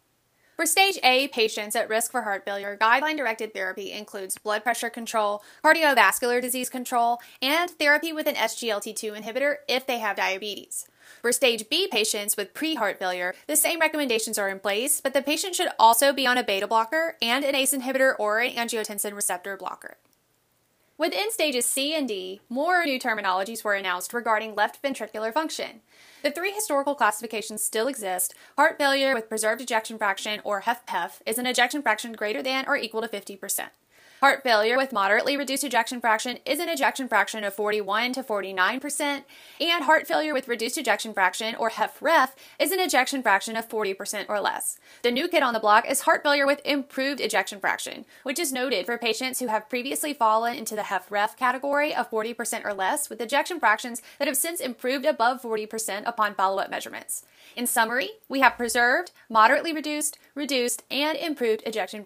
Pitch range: 215-285 Hz